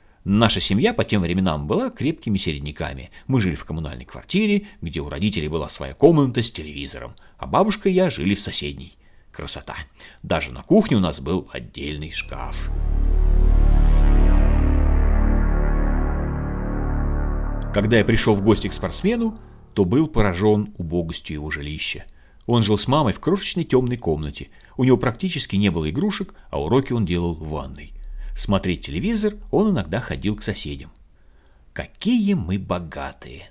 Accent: native